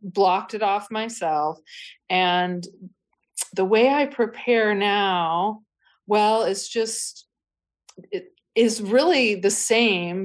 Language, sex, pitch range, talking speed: English, female, 160-195 Hz, 105 wpm